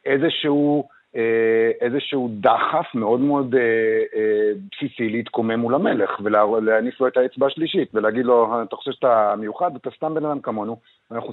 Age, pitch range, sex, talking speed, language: 50-69, 125-185 Hz, male, 155 wpm, Hebrew